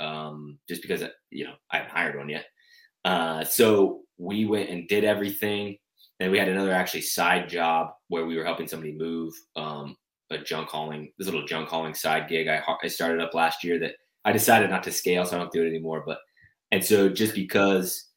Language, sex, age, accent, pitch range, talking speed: English, male, 20-39, American, 80-100 Hz, 210 wpm